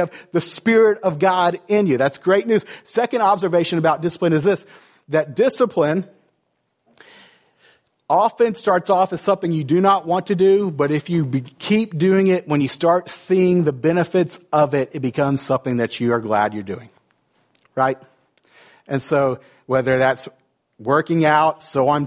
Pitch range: 145-180 Hz